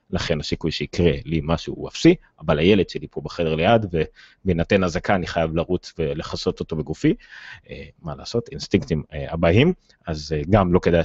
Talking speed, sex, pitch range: 155 wpm, male, 85-110 Hz